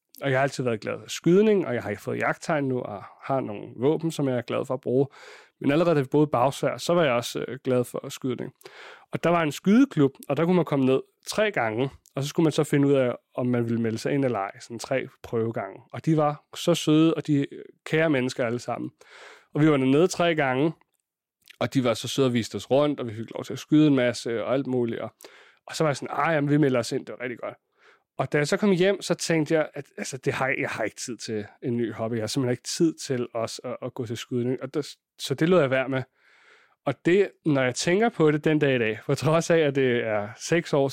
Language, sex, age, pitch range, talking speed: Danish, male, 30-49, 125-155 Hz, 270 wpm